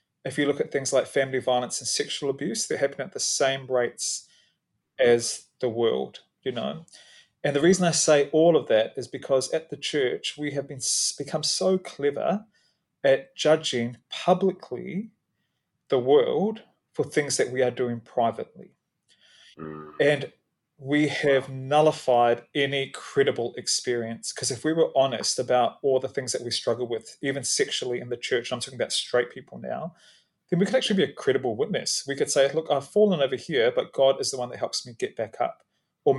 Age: 30-49